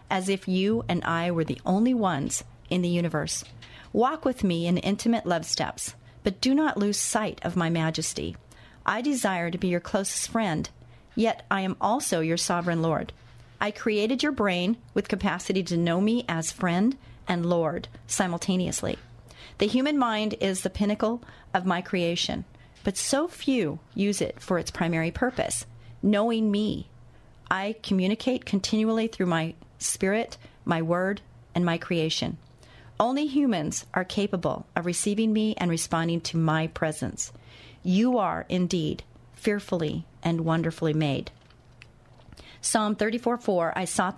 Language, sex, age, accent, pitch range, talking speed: English, female, 40-59, American, 160-210 Hz, 150 wpm